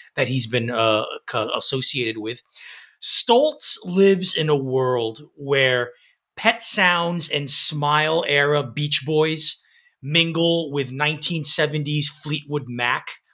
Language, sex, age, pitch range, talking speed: English, male, 30-49, 140-170 Hz, 105 wpm